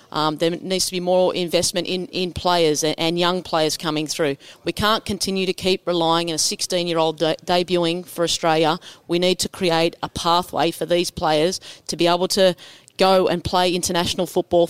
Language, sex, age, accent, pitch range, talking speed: English, female, 30-49, Australian, 165-185 Hz, 185 wpm